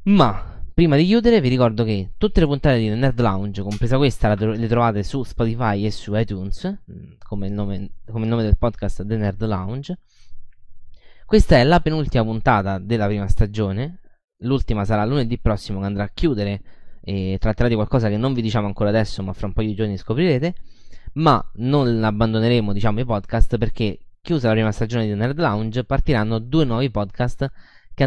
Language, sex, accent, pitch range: Italian, male, native, 105-125 Hz